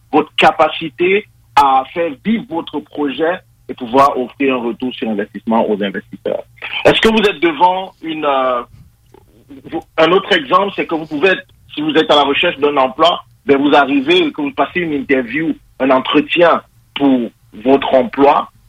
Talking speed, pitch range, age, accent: 160 wpm, 130-190 Hz, 50-69, French